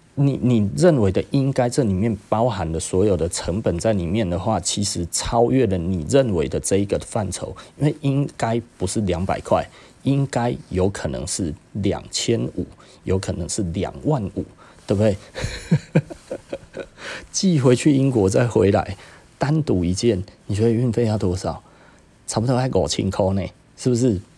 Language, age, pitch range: Chinese, 30-49, 95-125 Hz